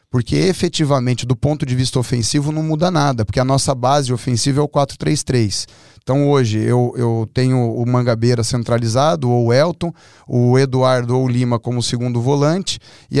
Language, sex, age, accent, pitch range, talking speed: Portuguese, male, 30-49, Brazilian, 115-140 Hz, 175 wpm